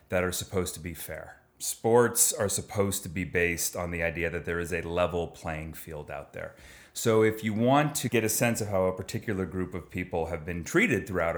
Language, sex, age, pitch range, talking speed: English, male, 30-49, 85-110 Hz, 225 wpm